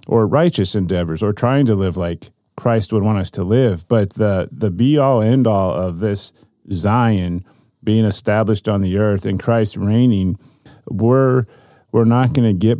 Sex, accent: male, American